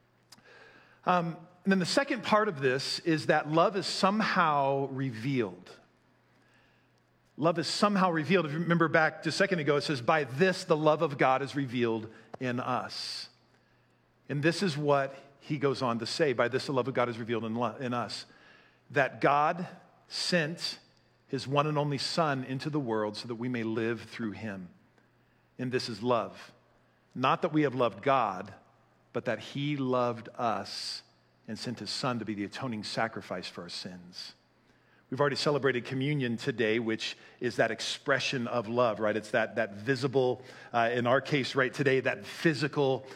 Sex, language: male, English